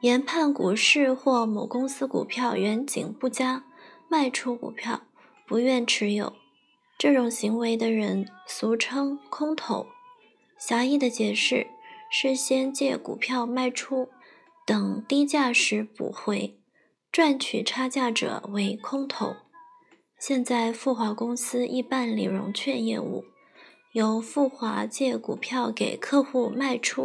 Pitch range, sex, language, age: 235-290 Hz, female, Chinese, 20-39